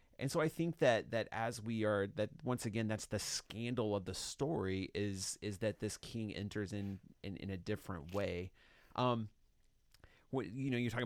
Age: 30-49